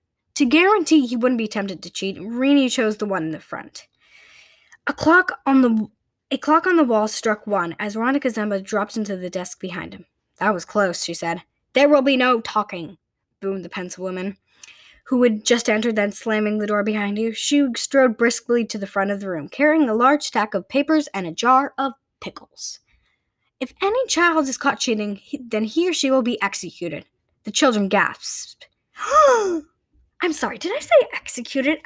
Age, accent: 10-29, American